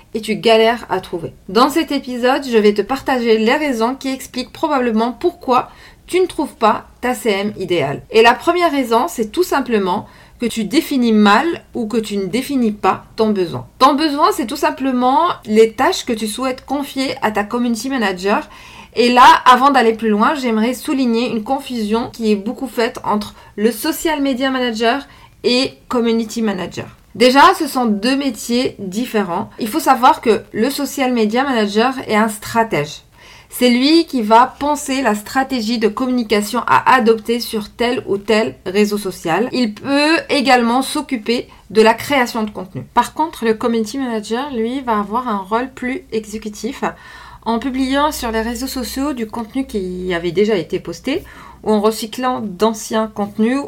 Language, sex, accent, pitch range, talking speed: French, female, French, 215-265 Hz, 170 wpm